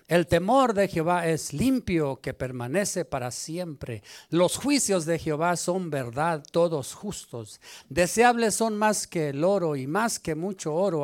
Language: Spanish